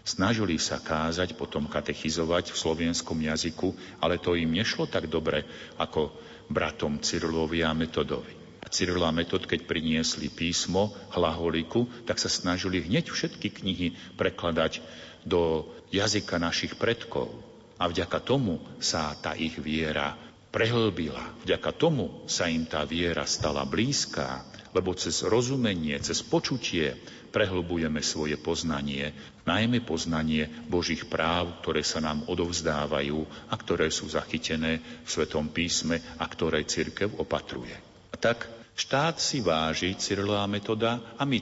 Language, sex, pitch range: Slovak, male, 80-95 Hz